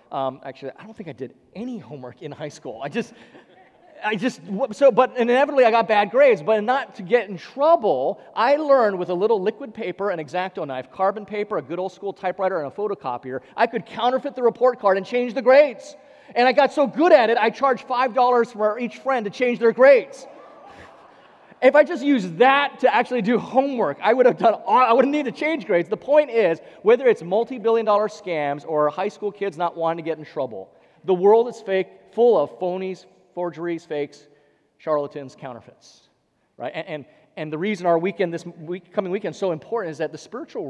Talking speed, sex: 210 wpm, male